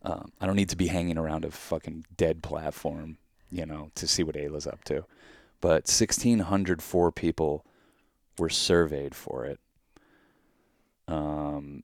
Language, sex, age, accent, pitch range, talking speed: English, male, 30-49, American, 75-85 Hz, 150 wpm